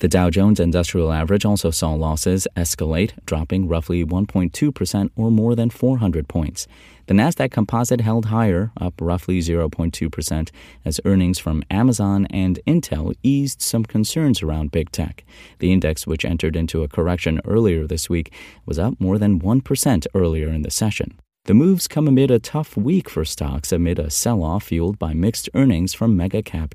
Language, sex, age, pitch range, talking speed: English, male, 30-49, 85-110 Hz, 175 wpm